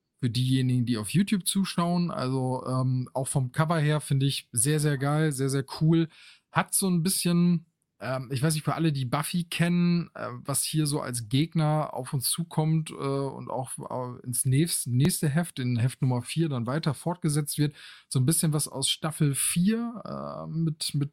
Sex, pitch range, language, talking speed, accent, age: male, 135-175 Hz, German, 190 wpm, German, 20-39